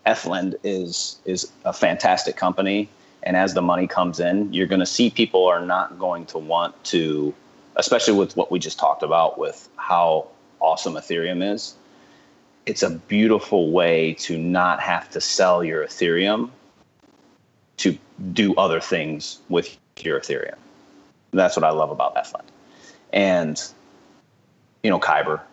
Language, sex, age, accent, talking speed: English, male, 30-49, American, 150 wpm